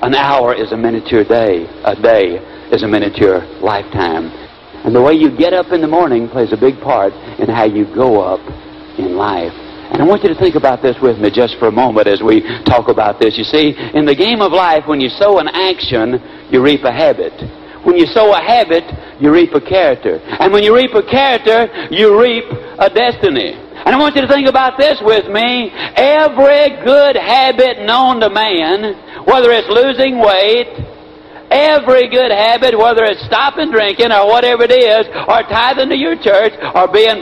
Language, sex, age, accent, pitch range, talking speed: English, male, 60-79, American, 180-275 Hz, 200 wpm